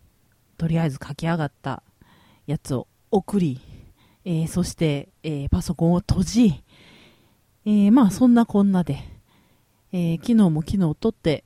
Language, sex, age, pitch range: Japanese, female, 40-59, 140-190 Hz